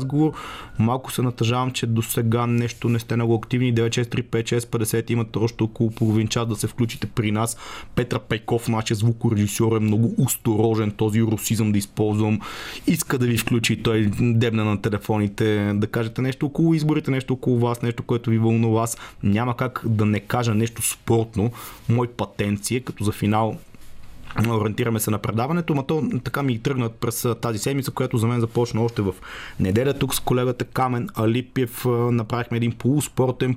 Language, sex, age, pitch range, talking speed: Bulgarian, male, 30-49, 110-125 Hz, 165 wpm